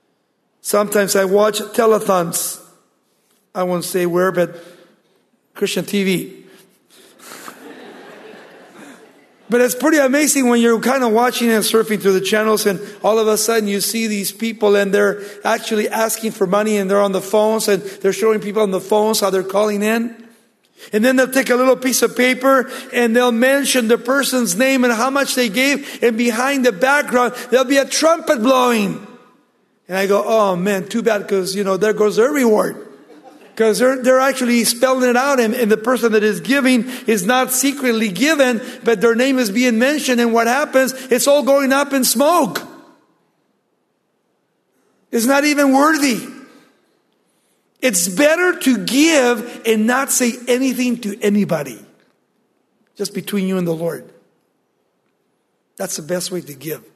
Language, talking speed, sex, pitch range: English, 165 wpm, male, 205-255 Hz